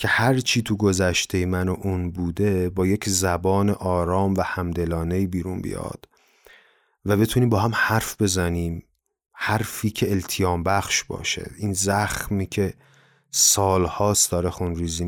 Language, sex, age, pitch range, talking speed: Persian, male, 30-49, 90-110 Hz, 135 wpm